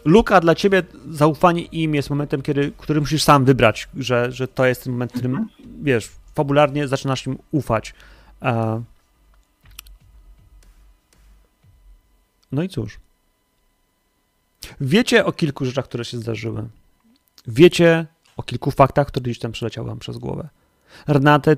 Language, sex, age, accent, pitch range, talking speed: Polish, male, 30-49, native, 120-150 Hz, 130 wpm